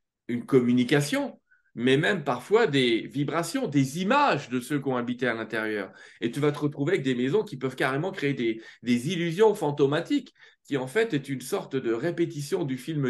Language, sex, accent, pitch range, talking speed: French, male, French, 120-165 Hz, 195 wpm